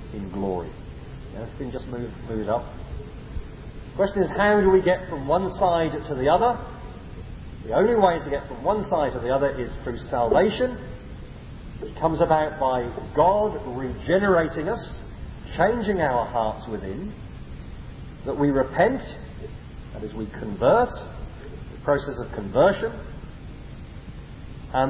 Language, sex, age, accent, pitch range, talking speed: English, male, 40-59, British, 135-200 Hz, 145 wpm